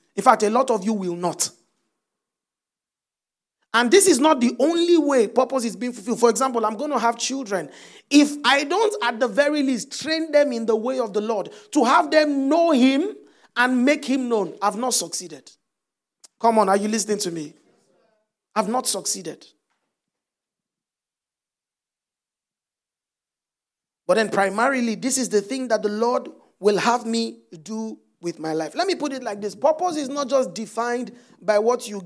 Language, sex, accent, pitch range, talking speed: English, male, Nigerian, 210-265 Hz, 175 wpm